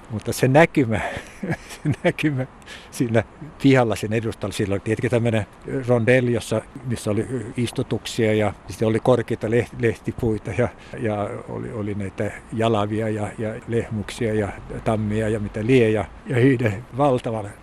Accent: native